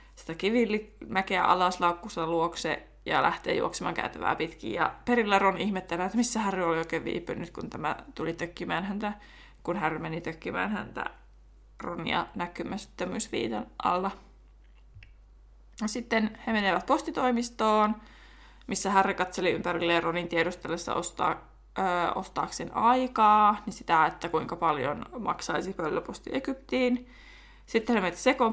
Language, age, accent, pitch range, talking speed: Finnish, 20-39, native, 175-220 Hz, 120 wpm